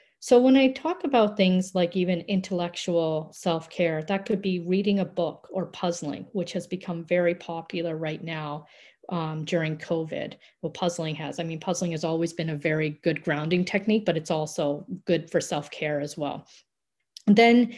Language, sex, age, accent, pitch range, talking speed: English, female, 40-59, American, 165-195 Hz, 170 wpm